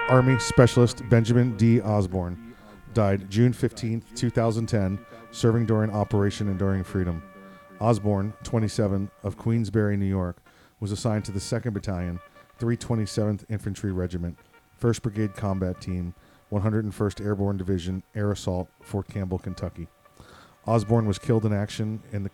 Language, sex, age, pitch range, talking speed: English, male, 40-59, 95-110 Hz, 130 wpm